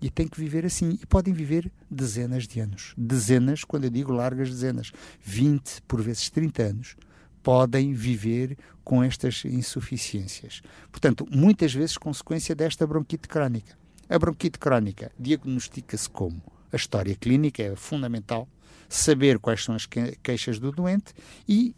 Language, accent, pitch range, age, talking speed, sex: Portuguese, Brazilian, 120-170 Hz, 60-79, 145 wpm, male